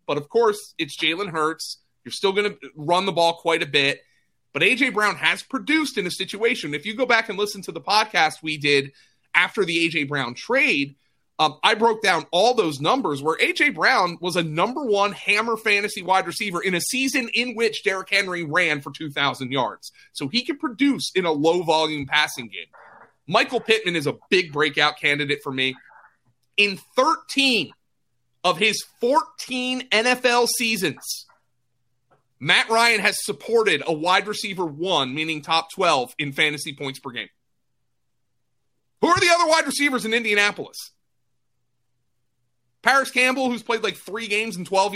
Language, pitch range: English, 155-230 Hz